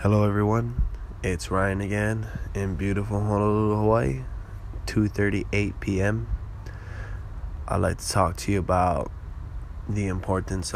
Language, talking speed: English, 105 wpm